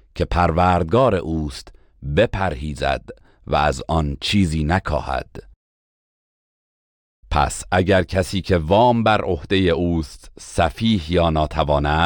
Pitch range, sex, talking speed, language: 75-95 Hz, male, 100 wpm, Persian